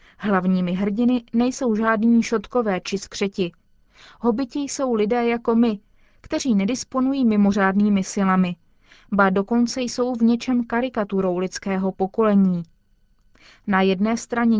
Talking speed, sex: 110 wpm, female